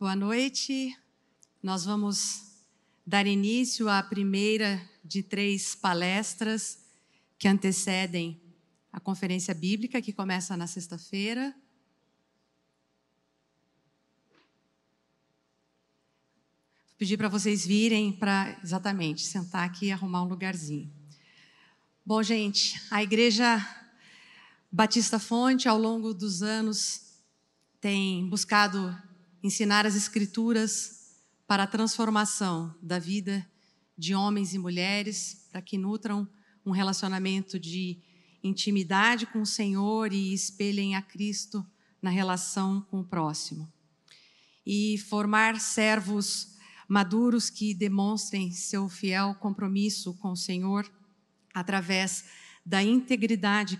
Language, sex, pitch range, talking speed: Portuguese, female, 185-210 Hz, 100 wpm